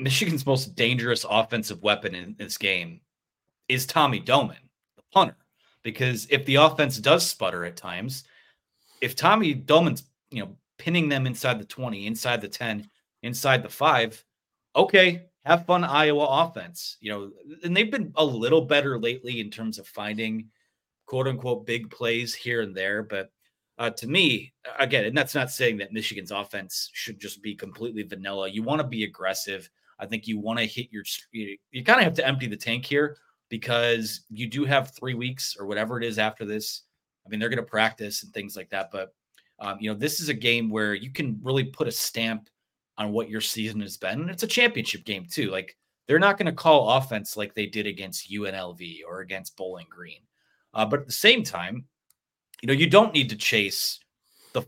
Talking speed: 195 wpm